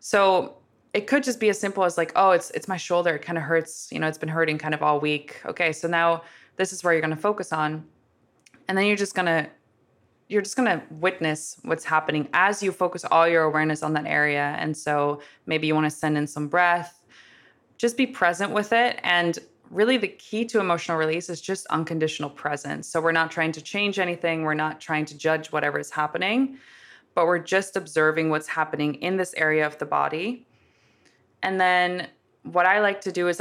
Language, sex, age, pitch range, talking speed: English, female, 20-39, 155-185 Hz, 215 wpm